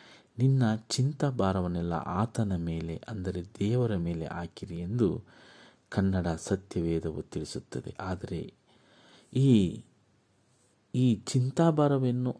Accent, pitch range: native, 85-115 Hz